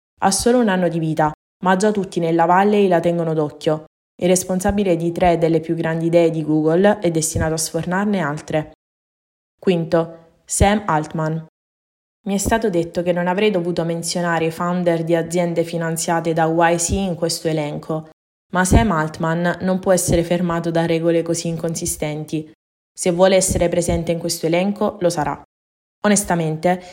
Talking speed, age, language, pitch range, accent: 160 wpm, 20-39, Italian, 165-185 Hz, native